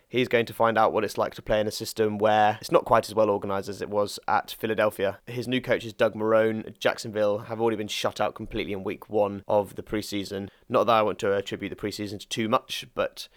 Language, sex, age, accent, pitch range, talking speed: English, male, 20-39, British, 105-115 Hz, 250 wpm